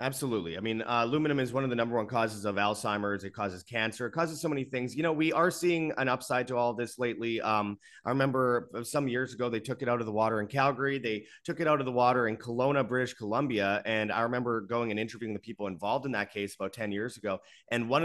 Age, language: 30-49, English